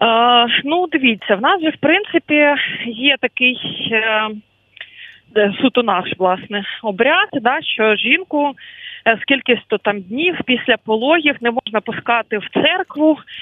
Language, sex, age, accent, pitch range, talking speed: Ukrainian, female, 30-49, native, 210-280 Hz, 125 wpm